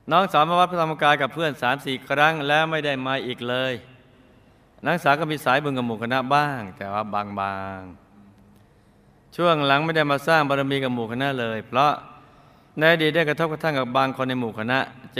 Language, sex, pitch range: Thai, male, 115-145 Hz